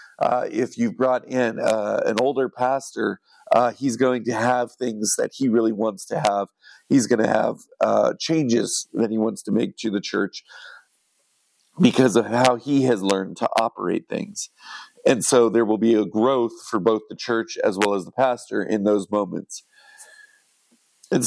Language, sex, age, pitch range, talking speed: English, male, 40-59, 110-135 Hz, 180 wpm